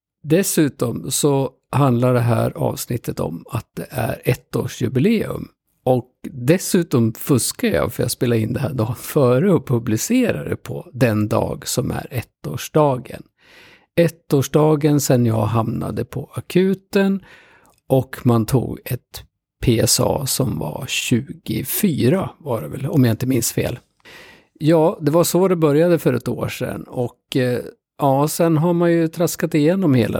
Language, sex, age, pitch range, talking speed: Swedish, male, 50-69, 120-145 Hz, 145 wpm